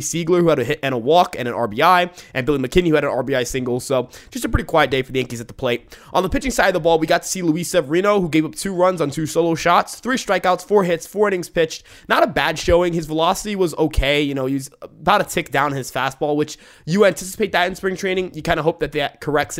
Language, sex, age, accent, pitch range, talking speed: English, male, 20-39, American, 125-170 Hz, 280 wpm